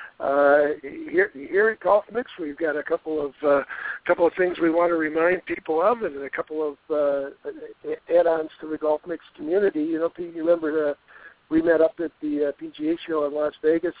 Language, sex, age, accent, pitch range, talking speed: English, male, 60-79, American, 140-165 Hz, 210 wpm